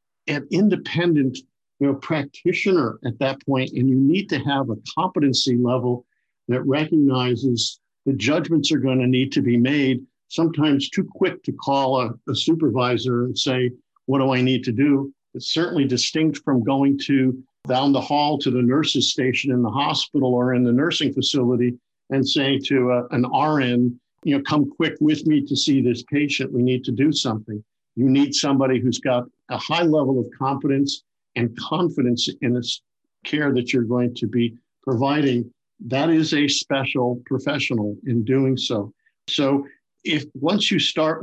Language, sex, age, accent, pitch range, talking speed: English, male, 50-69, American, 125-145 Hz, 175 wpm